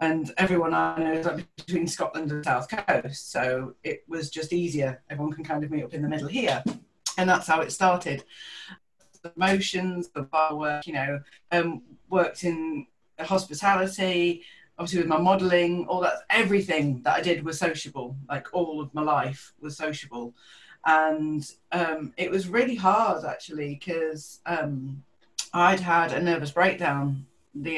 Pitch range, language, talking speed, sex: 150-180 Hz, English, 165 wpm, female